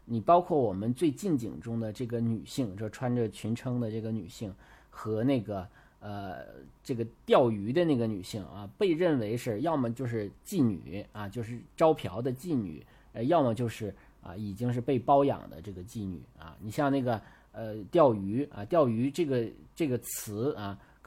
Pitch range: 105-125 Hz